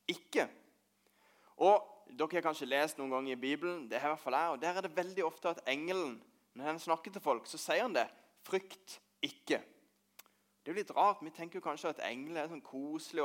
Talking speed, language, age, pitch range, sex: 230 wpm, English, 20-39, 135-195 Hz, male